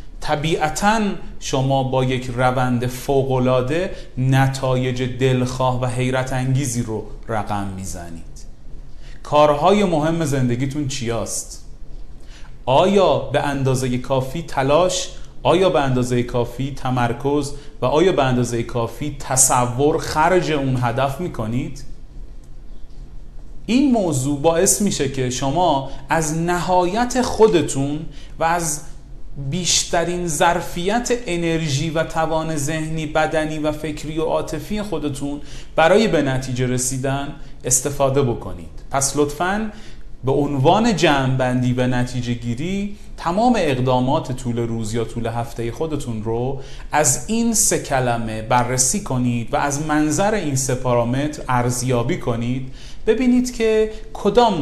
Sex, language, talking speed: male, Persian, 110 wpm